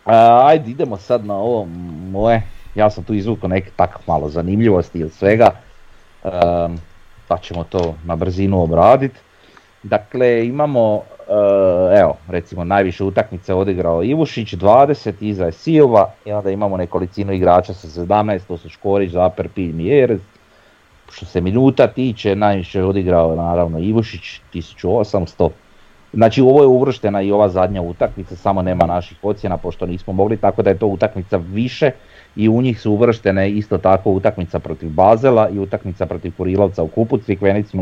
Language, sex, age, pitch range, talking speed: Croatian, male, 30-49, 85-105 Hz, 155 wpm